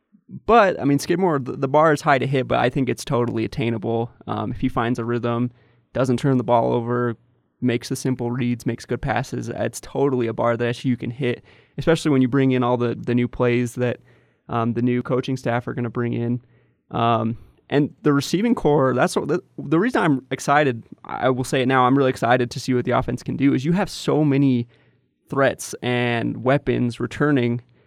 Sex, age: male, 20-39